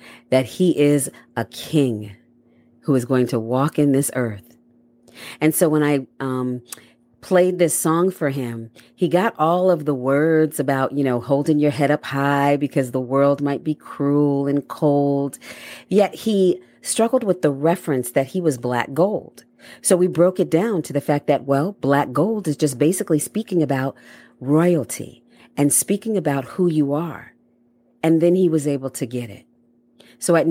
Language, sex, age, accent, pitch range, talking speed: English, female, 40-59, American, 120-165 Hz, 175 wpm